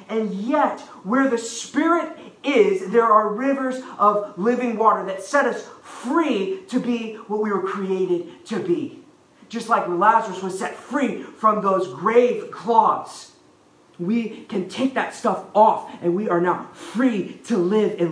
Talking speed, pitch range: 160 wpm, 180-240 Hz